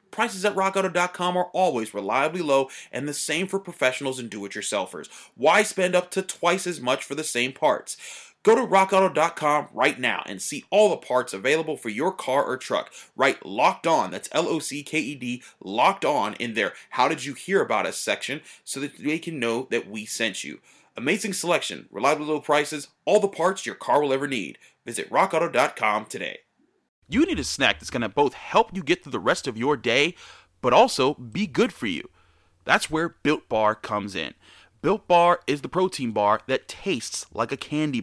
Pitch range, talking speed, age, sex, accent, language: 125-180 Hz, 205 wpm, 30-49, male, American, English